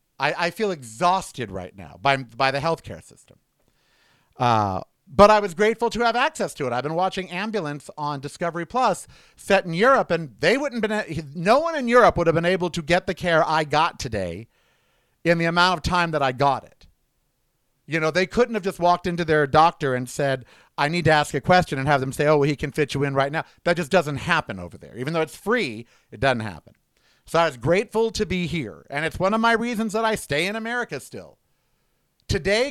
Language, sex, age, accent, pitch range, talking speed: English, male, 50-69, American, 145-200 Hz, 225 wpm